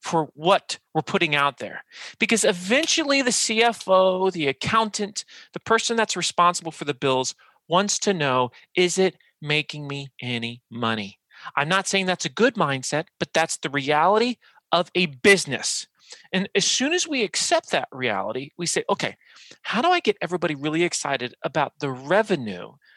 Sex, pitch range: male, 125-190 Hz